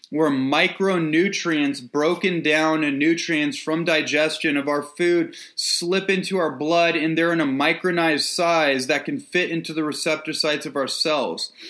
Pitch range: 145-170 Hz